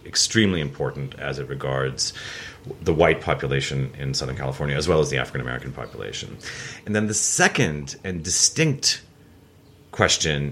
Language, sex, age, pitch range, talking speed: English, male, 30-49, 70-105 Hz, 145 wpm